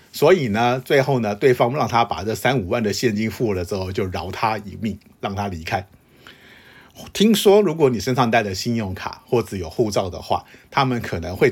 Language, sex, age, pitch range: Chinese, male, 50-69, 100-125 Hz